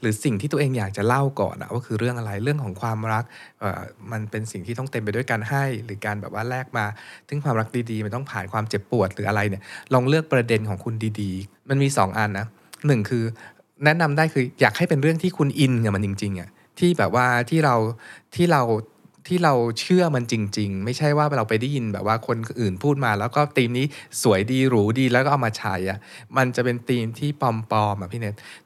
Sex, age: male, 20-39